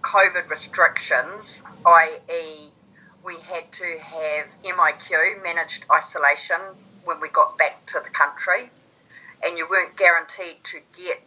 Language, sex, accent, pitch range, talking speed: English, female, Australian, 155-205 Hz, 120 wpm